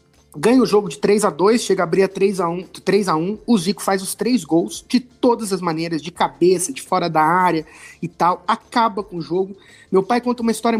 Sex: male